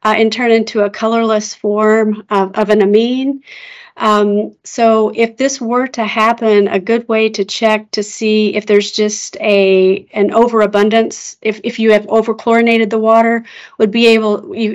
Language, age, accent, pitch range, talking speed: English, 40-59, American, 205-230 Hz, 170 wpm